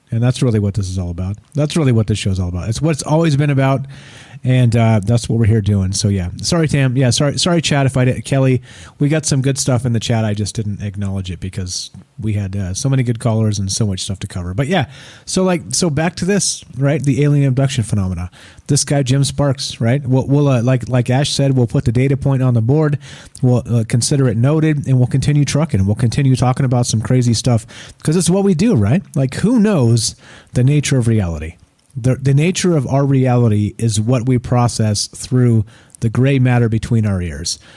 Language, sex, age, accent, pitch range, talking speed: English, male, 30-49, American, 110-140 Hz, 230 wpm